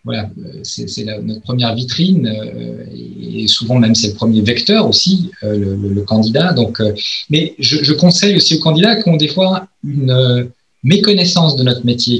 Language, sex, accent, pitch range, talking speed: French, male, French, 105-130 Hz, 185 wpm